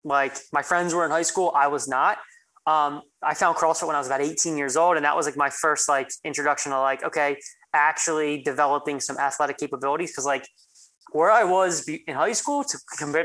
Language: English